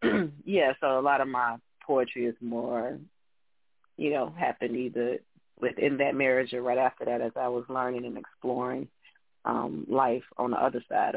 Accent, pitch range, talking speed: American, 120-145 Hz, 170 wpm